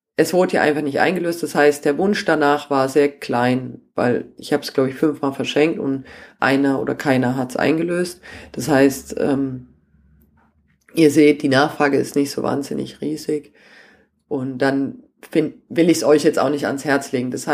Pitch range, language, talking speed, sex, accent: 130-150 Hz, German, 180 wpm, female, German